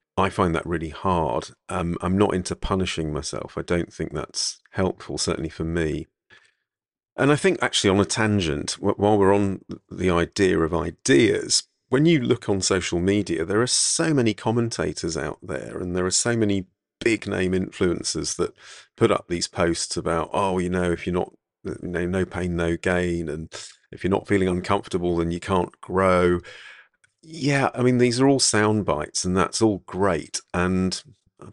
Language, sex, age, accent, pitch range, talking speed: English, male, 40-59, British, 85-100 Hz, 185 wpm